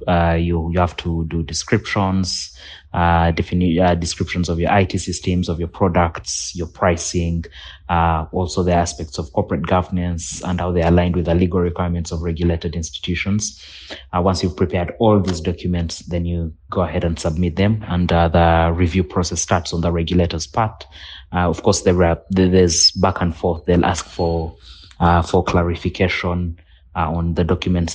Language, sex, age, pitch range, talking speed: English, male, 20-39, 85-90 Hz, 175 wpm